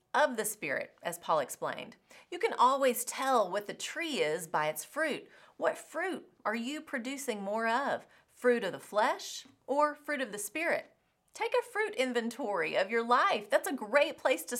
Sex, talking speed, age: female, 185 wpm, 30-49